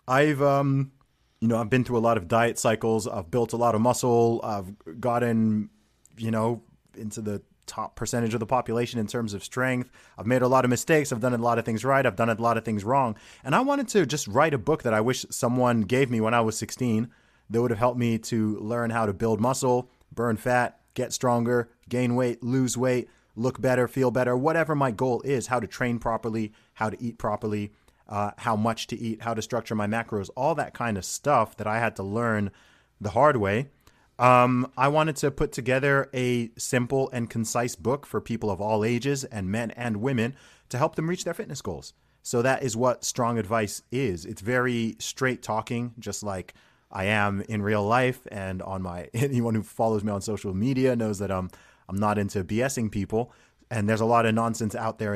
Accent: American